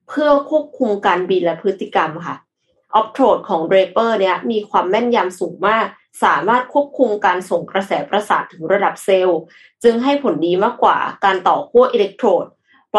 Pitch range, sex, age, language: 185-245 Hz, female, 20-39, Thai